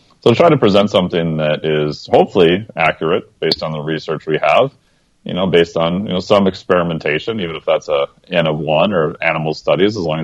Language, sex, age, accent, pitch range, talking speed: English, male, 30-49, American, 80-95 Hz, 205 wpm